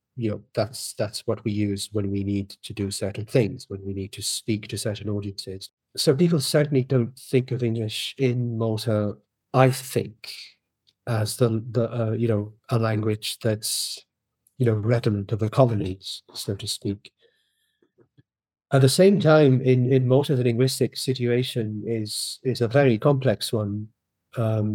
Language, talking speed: English, 165 wpm